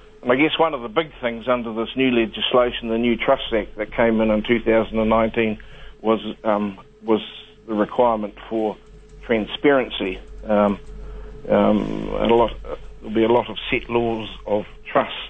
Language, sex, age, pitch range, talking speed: English, male, 50-69, 110-125 Hz, 155 wpm